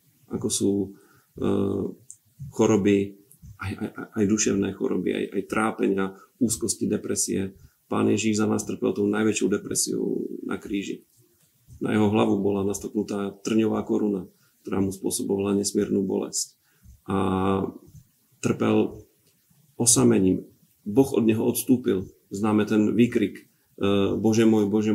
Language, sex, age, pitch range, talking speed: Slovak, male, 40-59, 100-115 Hz, 125 wpm